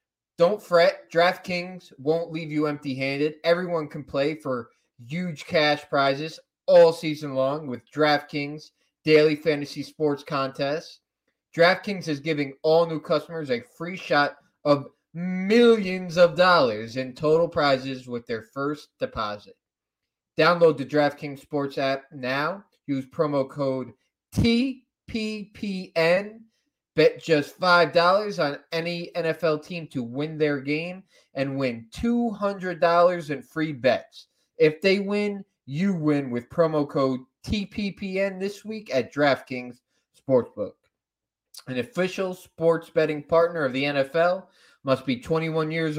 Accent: American